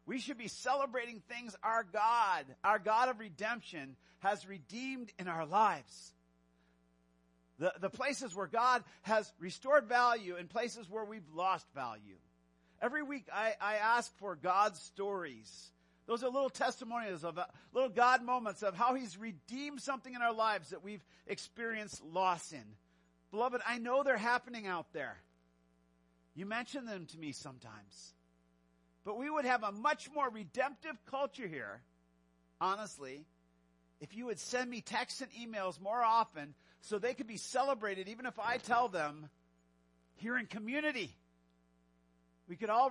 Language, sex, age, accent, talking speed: English, male, 50-69, American, 150 wpm